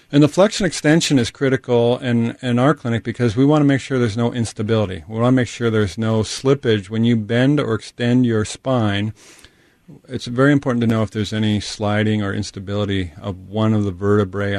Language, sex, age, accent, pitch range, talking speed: English, male, 40-59, American, 105-130 Hz, 205 wpm